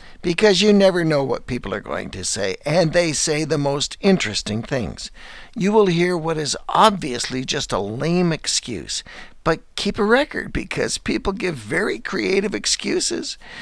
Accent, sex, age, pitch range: American, male, 60-79, 145-205 Hz